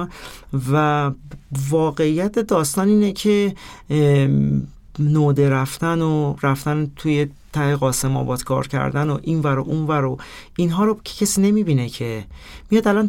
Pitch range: 135-175 Hz